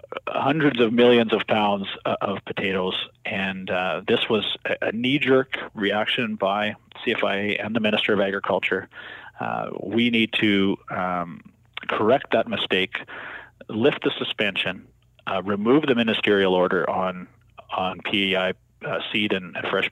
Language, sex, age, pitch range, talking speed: English, male, 40-59, 105-135 Hz, 135 wpm